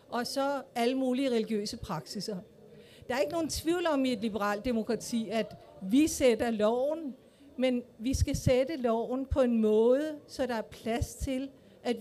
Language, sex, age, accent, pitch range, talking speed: Danish, female, 50-69, native, 215-260 Hz, 170 wpm